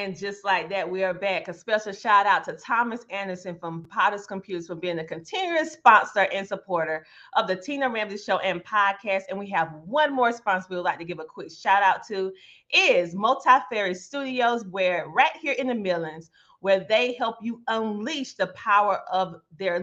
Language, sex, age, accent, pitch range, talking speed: English, female, 30-49, American, 180-250 Hz, 205 wpm